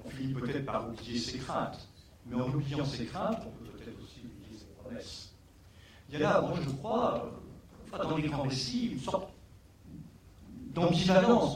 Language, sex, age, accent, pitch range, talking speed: French, male, 50-69, French, 95-150 Hz, 170 wpm